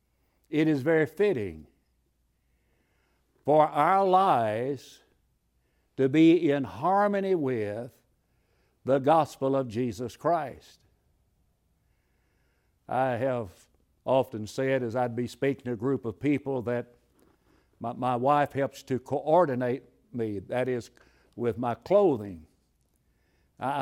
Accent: American